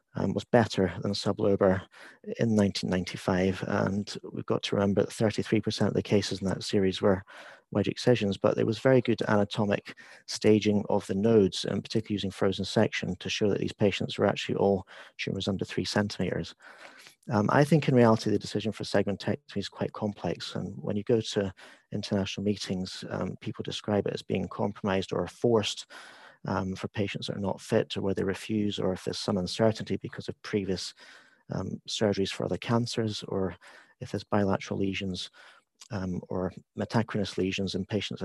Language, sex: English, male